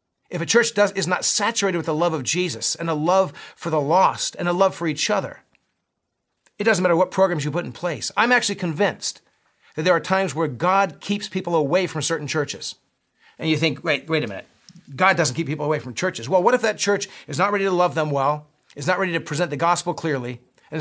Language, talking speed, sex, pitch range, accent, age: English, 235 wpm, male, 145-180 Hz, American, 40-59